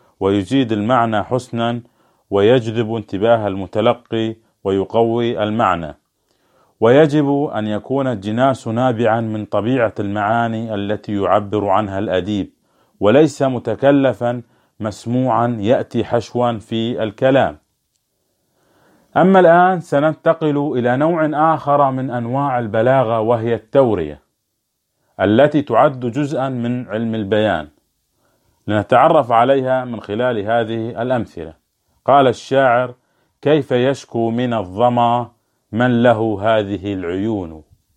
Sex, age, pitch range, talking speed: male, 40-59, 110-130 Hz, 95 wpm